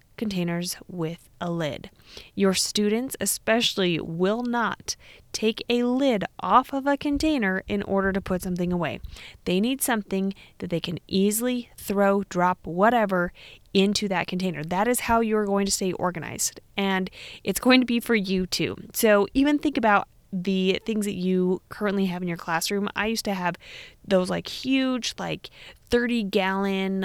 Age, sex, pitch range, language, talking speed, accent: 20-39, female, 180-225 Hz, English, 165 wpm, American